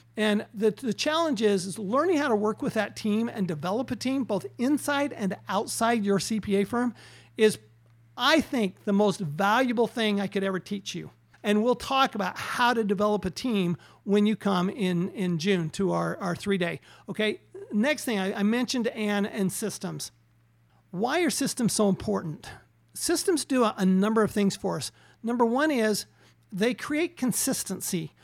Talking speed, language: 180 wpm, English